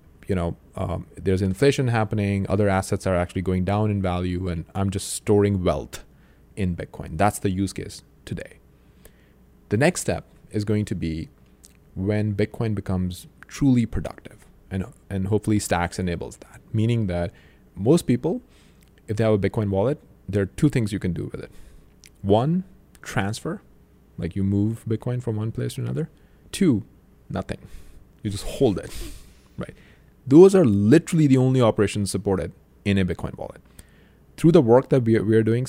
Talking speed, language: 170 wpm, English